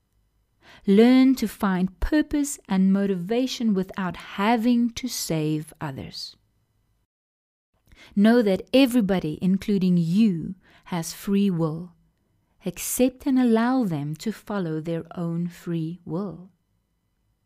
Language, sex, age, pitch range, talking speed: English, female, 30-49, 155-230 Hz, 100 wpm